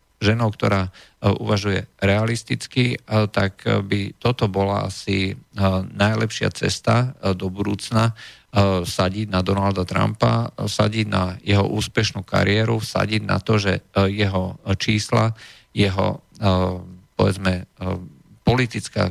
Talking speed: 95 wpm